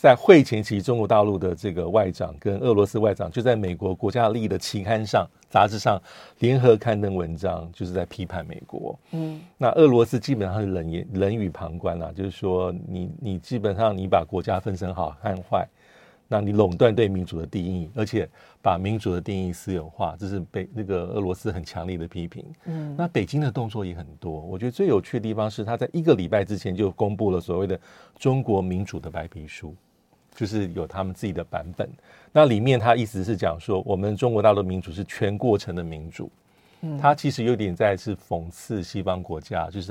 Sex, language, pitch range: male, Chinese, 90-115 Hz